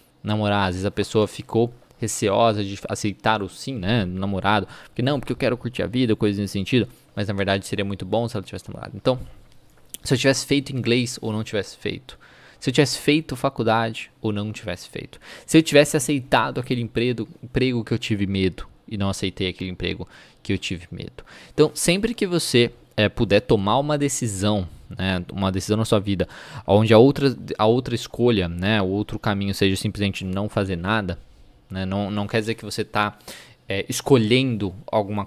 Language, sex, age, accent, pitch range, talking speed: Portuguese, male, 20-39, Brazilian, 100-125 Hz, 190 wpm